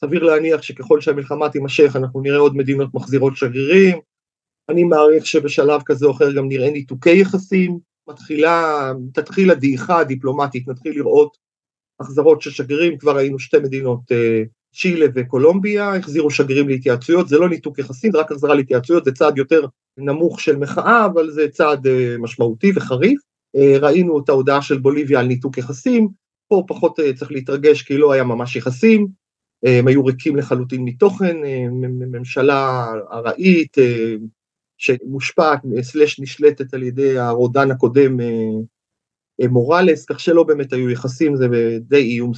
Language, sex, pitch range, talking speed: Hebrew, male, 130-160 Hz, 125 wpm